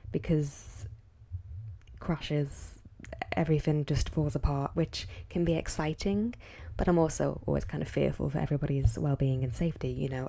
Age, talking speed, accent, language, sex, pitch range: 10-29, 140 wpm, British, English, female, 110-170 Hz